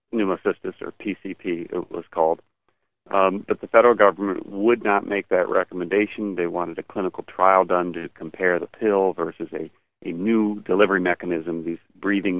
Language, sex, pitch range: English, male, 85-100 Hz